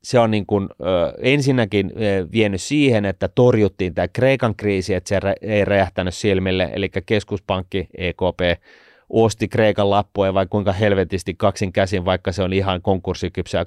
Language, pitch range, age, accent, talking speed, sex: Finnish, 95-110 Hz, 30-49, native, 155 wpm, male